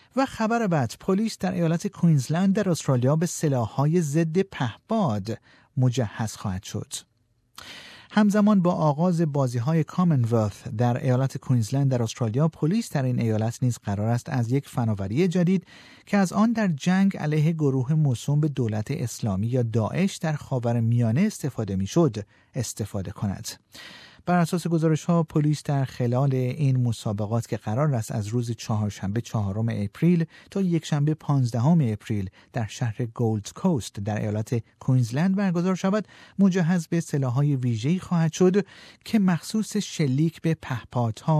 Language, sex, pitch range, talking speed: Persian, male, 115-170 Hz, 145 wpm